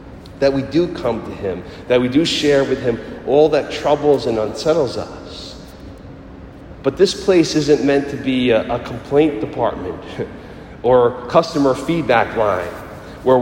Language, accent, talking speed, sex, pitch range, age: English, American, 150 wpm, male, 110-140 Hz, 40-59